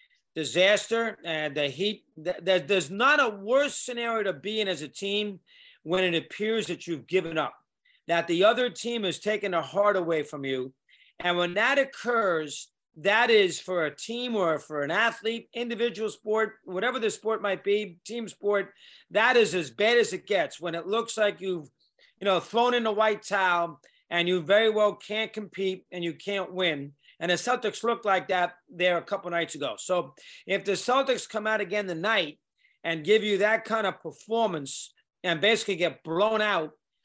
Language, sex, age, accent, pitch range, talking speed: English, male, 40-59, American, 175-215 Hz, 190 wpm